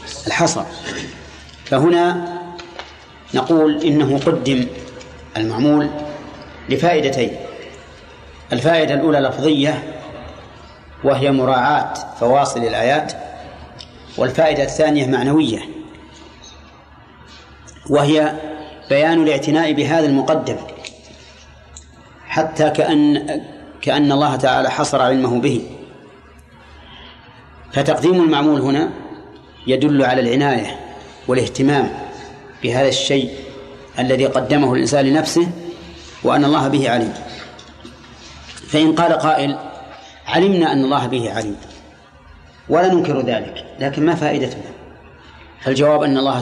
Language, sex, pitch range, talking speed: Arabic, male, 120-155 Hz, 85 wpm